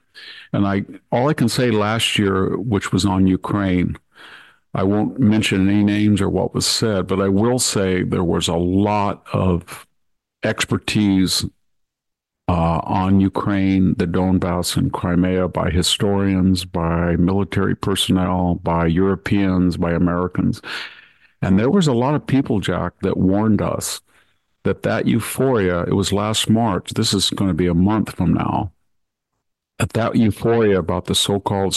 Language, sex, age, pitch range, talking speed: English, male, 50-69, 90-105 Hz, 150 wpm